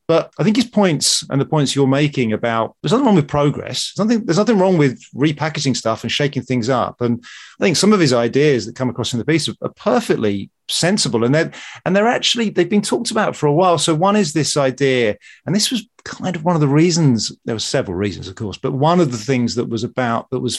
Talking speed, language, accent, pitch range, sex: 250 wpm, English, British, 120-180 Hz, male